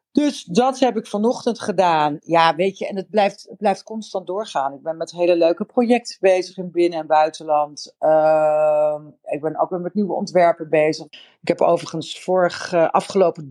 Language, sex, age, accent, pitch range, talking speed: Dutch, female, 50-69, Dutch, 150-195 Hz, 185 wpm